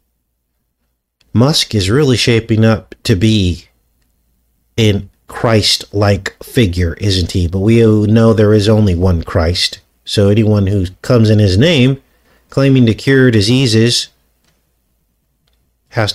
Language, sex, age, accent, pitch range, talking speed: English, male, 50-69, American, 95-130 Hz, 120 wpm